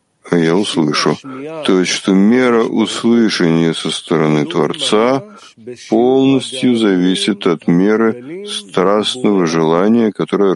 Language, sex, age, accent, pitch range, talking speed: Russian, male, 50-69, native, 90-125 Hz, 95 wpm